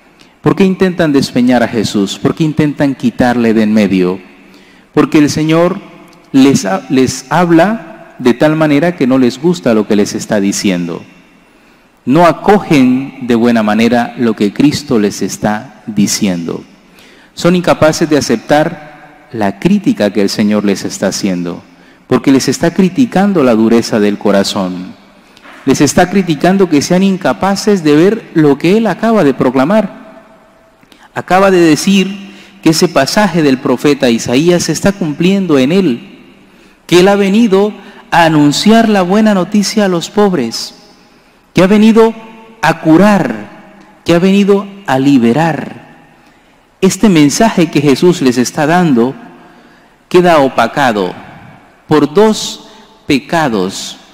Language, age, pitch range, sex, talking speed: English, 40-59, 120-190 Hz, male, 135 wpm